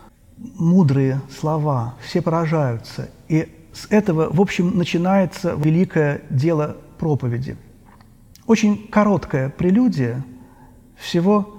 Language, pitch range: Russian, 140-190 Hz